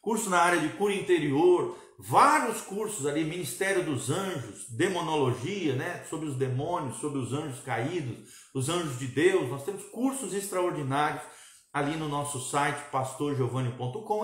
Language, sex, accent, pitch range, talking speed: Portuguese, male, Brazilian, 120-150 Hz, 145 wpm